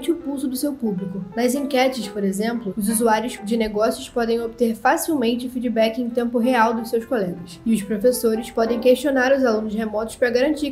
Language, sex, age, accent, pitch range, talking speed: Portuguese, female, 10-29, Brazilian, 225-265 Hz, 185 wpm